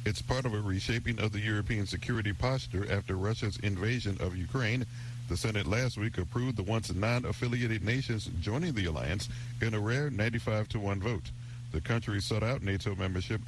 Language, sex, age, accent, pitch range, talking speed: English, male, 50-69, American, 105-120 Hz, 170 wpm